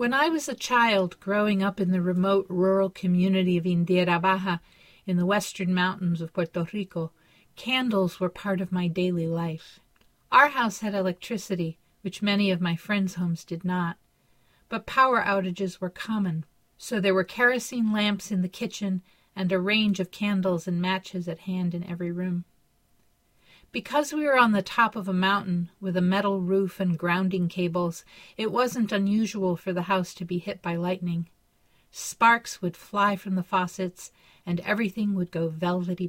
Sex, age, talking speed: female, 50-69, 175 wpm